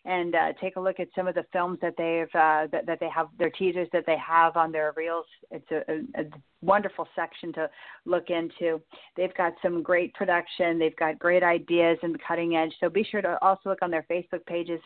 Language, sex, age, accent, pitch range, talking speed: English, female, 40-59, American, 165-185 Hz, 225 wpm